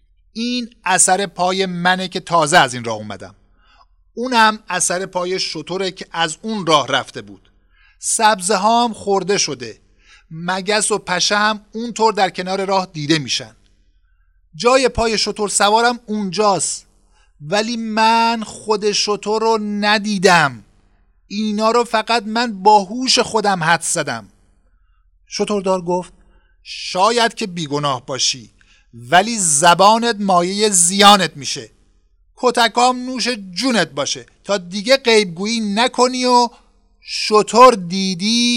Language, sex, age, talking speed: Persian, male, 50-69, 115 wpm